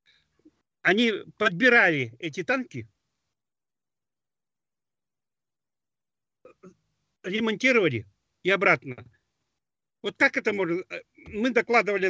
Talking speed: 65 wpm